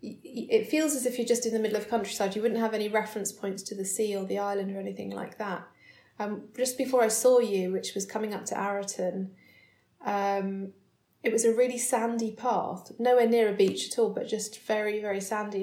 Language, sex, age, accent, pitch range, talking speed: English, female, 30-49, British, 195-225 Hz, 225 wpm